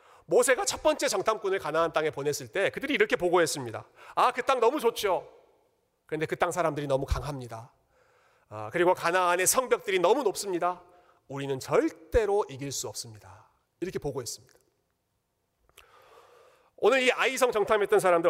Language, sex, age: Korean, male, 40-59